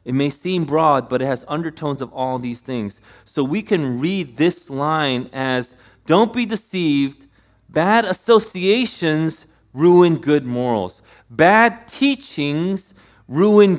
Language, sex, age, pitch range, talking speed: English, male, 30-49, 110-170 Hz, 130 wpm